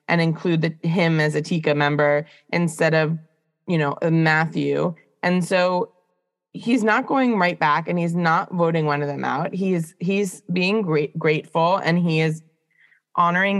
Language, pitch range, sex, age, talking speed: English, 160-195 Hz, female, 20-39, 155 wpm